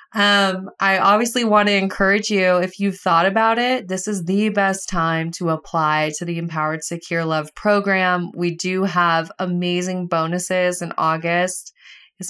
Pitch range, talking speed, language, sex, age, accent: 170-195 Hz, 160 wpm, English, female, 20-39, American